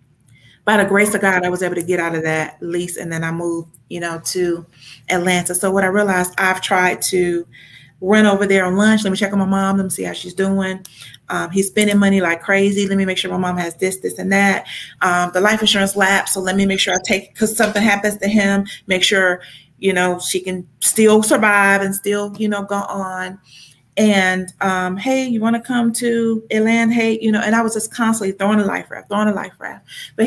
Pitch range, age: 180-210 Hz, 30-49